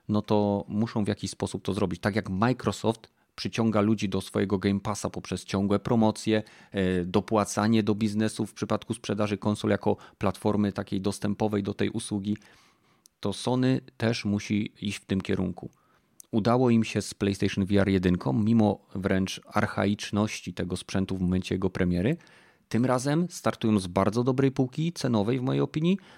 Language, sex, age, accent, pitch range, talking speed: Polish, male, 30-49, native, 95-115 Hz, 160 wpm